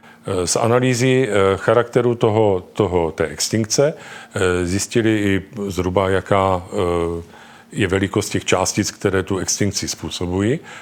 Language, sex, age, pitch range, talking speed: Czech, male, 40-59, 95-120 Hz, 105 wpm